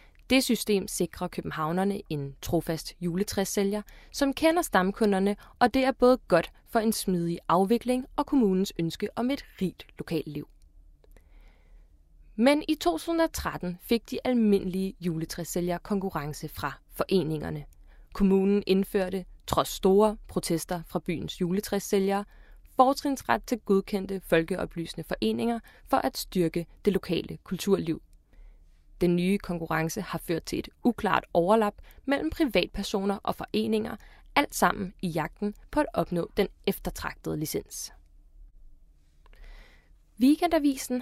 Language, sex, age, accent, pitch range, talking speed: Danish, female, 20-39, native, 165-215 Hz, 115 wpm